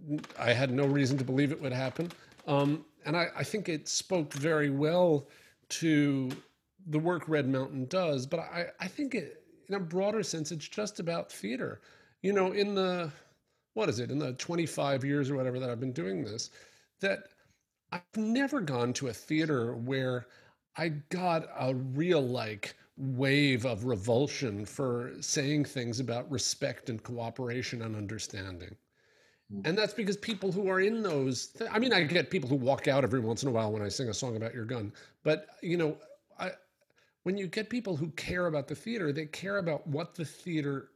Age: 40-59